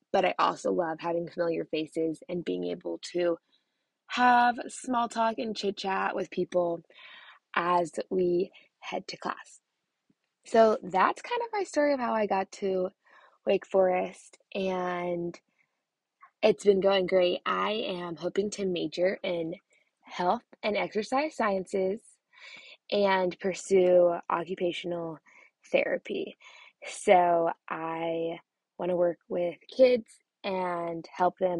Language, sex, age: English, female, 20-39